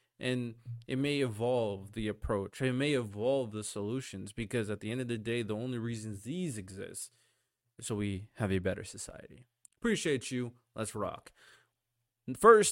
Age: 20-39